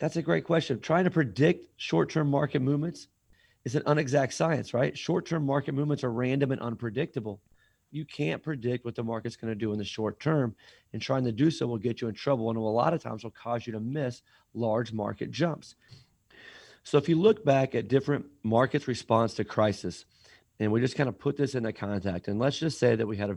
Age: 30-49